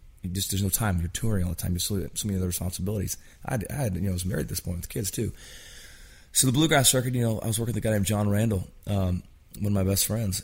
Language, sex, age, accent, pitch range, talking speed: English, male, 30-49, American, 90-110 Hz, 275 wpm